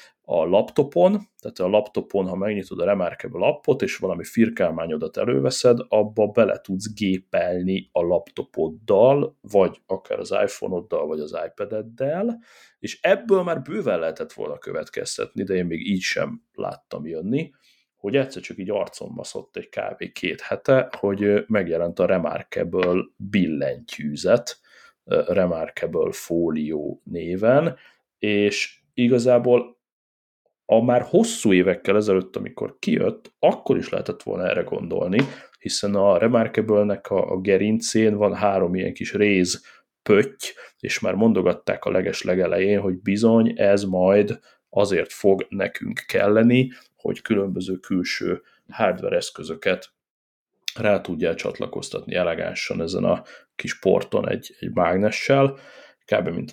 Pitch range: 95-135 Hz